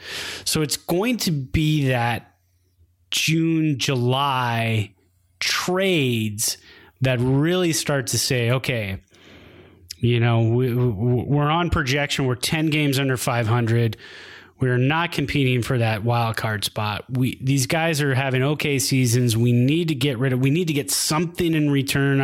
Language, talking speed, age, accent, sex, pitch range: English, 145 wpm, 30-49, American, male, 115-145 Hz